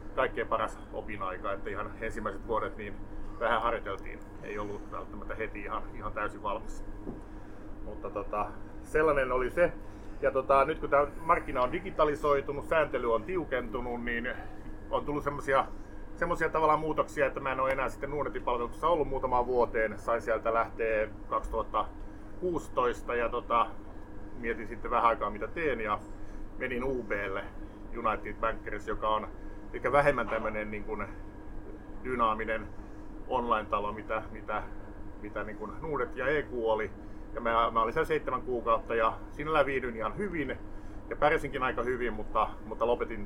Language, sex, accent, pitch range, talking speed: Finnish, male, native, 105-130 Hz, 145 wpm